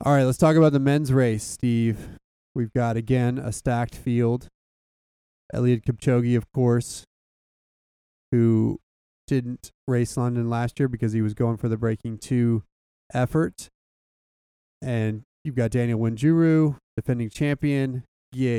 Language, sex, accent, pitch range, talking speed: English, male, American, 110-130 Hz, 135 wpm